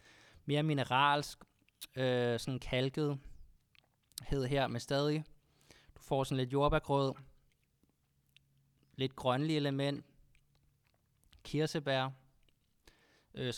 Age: 20-39